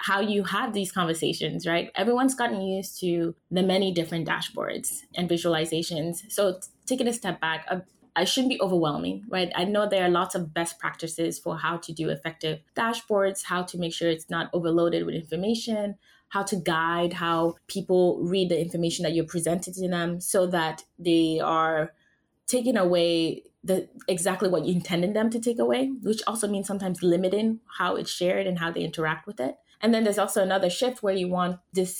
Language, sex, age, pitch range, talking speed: English, female, 20-39, 165-195 Hz, 190 wpm